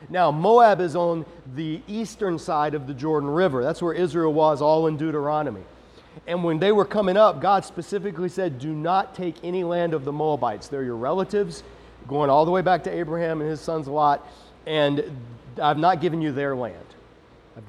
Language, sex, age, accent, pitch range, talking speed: English, male, 40-59, American, 140-170 Hz, 195 wpm